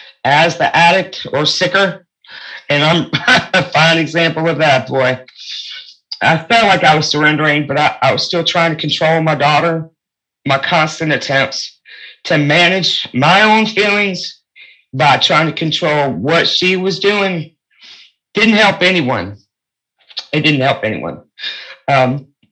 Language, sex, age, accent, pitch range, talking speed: English, male, 40-59, American, 140-175 Hz, 140 wpm